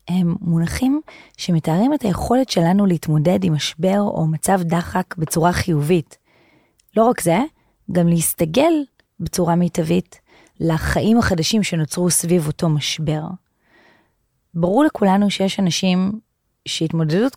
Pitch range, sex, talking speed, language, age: 165-215 Hz, female, 110 wpm, Hebrew, 30-49